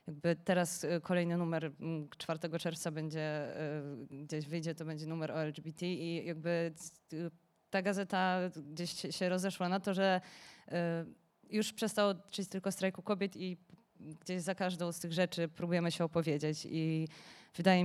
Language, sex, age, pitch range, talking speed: Polish, female, 20-39, 170-190 Hz, 135 wpm